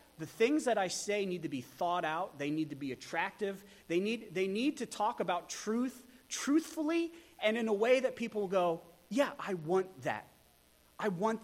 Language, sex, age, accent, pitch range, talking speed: English, male, 30-49, American, 160-240 Hz, 190 wpm